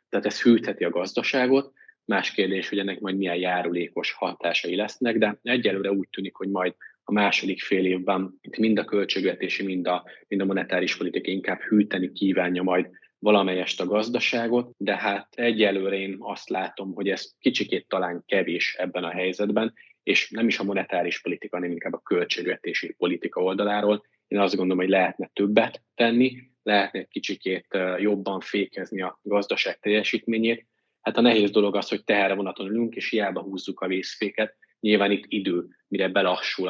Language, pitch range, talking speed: Hungarian, 95-105 Hz, 165 wpm